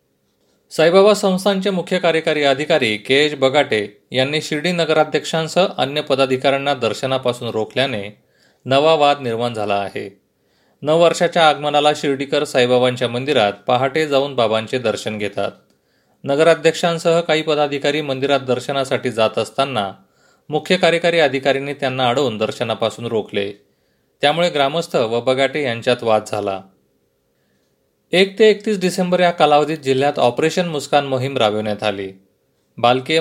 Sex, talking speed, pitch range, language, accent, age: male, 115 wpm, 105-150 Hz, Marathi, native, 30-49